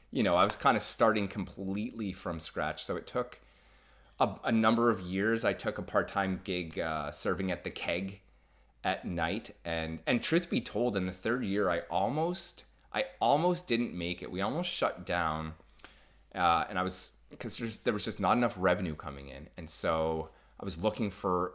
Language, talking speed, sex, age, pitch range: English, 190 wpm, male, 30-49, 80-105 Hz